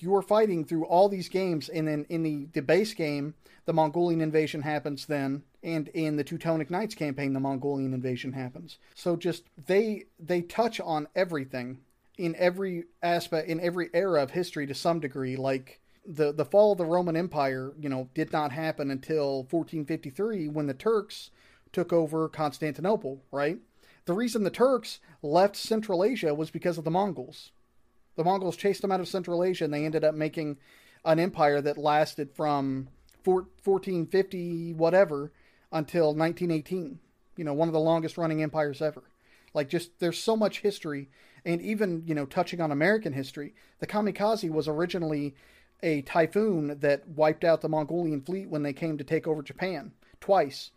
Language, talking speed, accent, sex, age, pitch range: English, 170 wpm, American, male, 40-59, 150-180 Hz